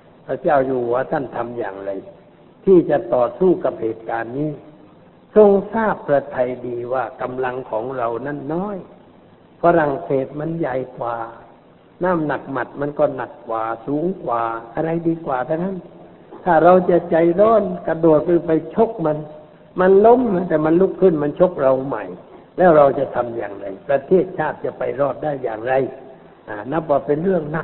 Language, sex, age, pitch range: Thai, male, 60-79, 130-175 Hz